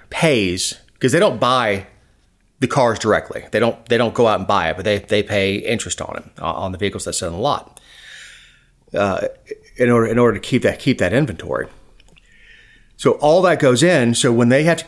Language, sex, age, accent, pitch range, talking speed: English, male, 30-49, American, 105-130 Hz, 210 wpm